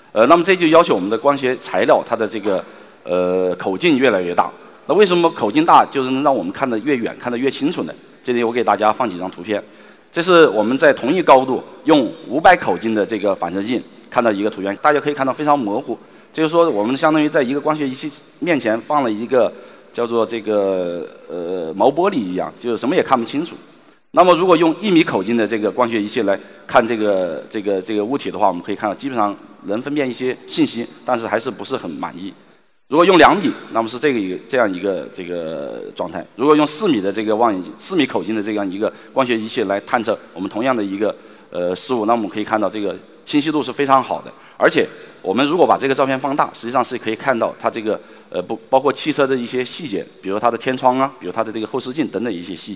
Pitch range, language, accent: 110-145 Hz, Chinese, native